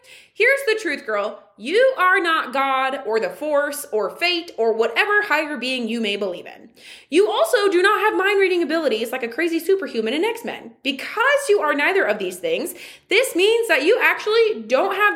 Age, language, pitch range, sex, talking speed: 20-39, English, 260-415 Hz, female, 195 wpm